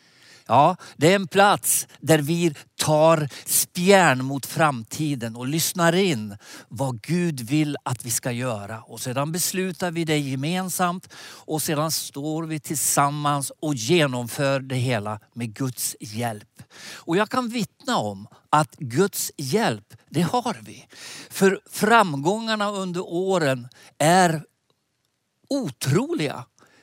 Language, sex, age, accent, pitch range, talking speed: Swedish, male, 60-79, native, 135-190 Hz, 125 wpm